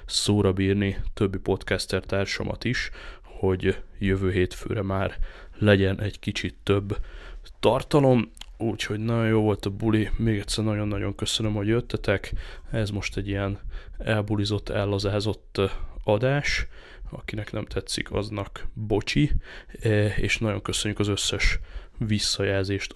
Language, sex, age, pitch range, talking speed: Hungarian, male, 20-39, 95-105 Hz, 115 wpm